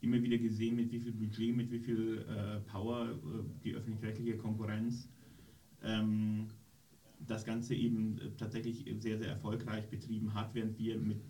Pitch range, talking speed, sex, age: 110-120 Hz, 160 wpm, male, 30-49